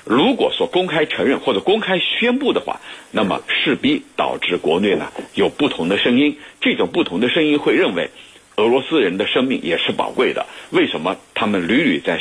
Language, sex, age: Chinese, male, 60-79